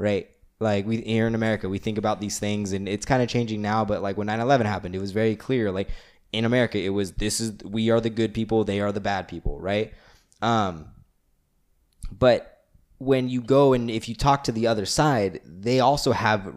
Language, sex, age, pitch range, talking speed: English, male, 20-39, 105-125 Hz, 215 wpm